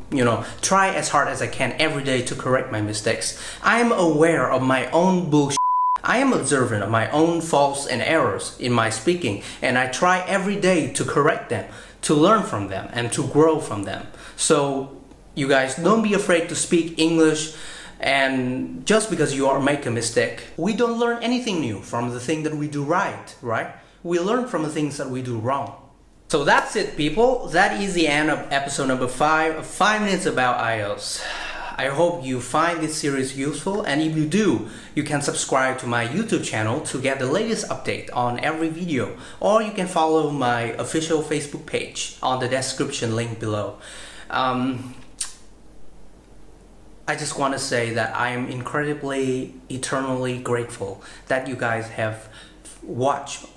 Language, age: Vietnamese, 30-49